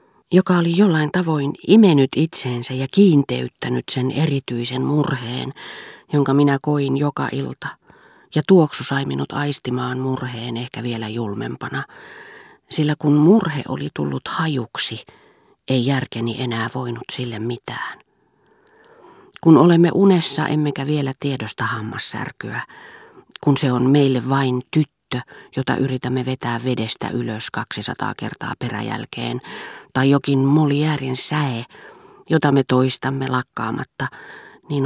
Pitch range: 125-155 Hz